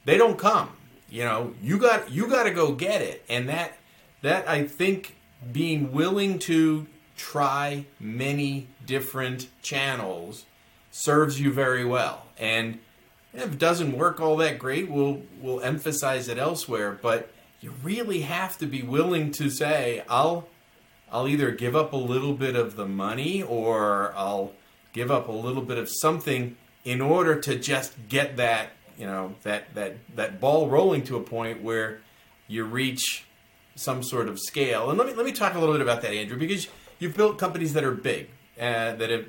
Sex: male